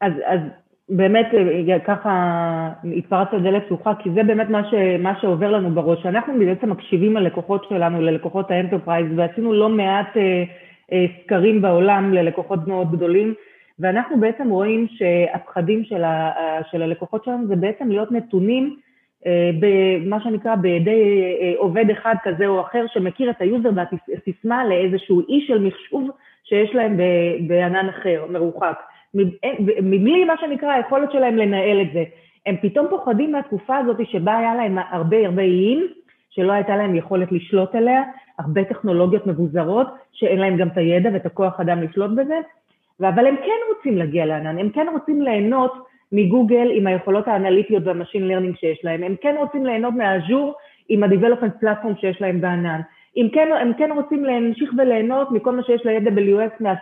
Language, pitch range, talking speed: Hebrew, 180-230 Hz, 145 wpm